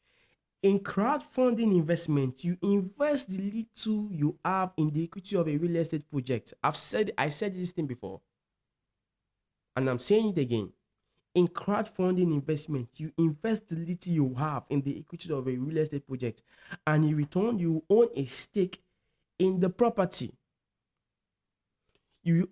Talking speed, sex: 150 wpm, male